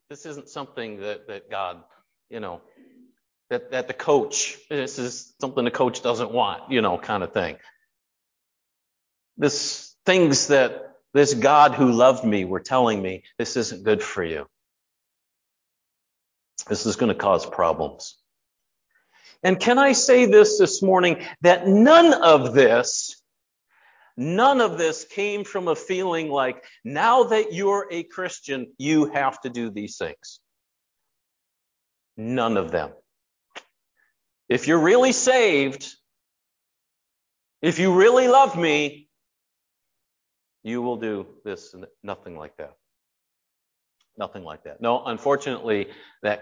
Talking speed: 130 wpm